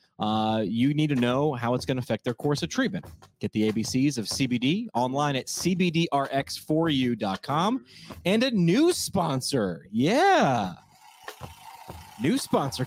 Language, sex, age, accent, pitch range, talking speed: English, male, 30-49, American, 125-175 Hz, 135 wpm